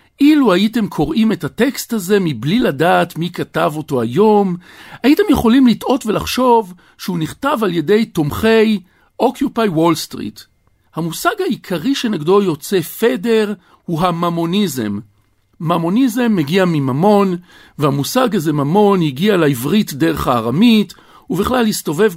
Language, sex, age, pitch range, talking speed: Hebrew, male, 50-69, 140-215 Hz, 115 wpm